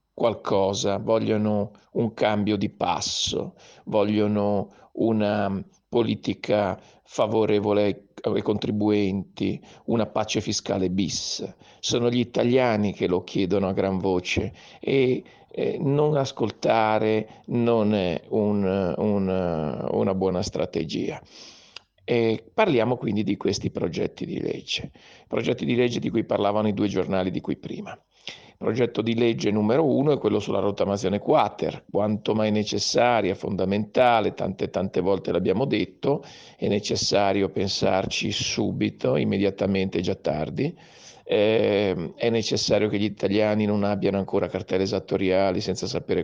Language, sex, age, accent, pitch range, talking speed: Italian, male, 50-69, native, 95-110 Hz, 120 wpm